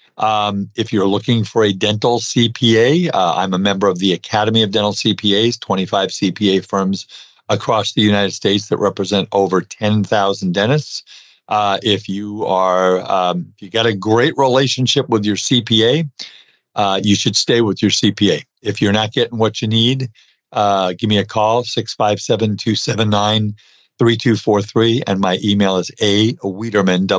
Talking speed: 150 wpm